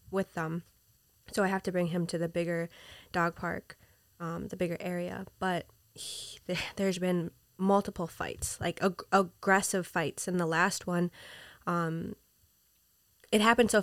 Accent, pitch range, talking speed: American, 175-195 Hz, 150 wpm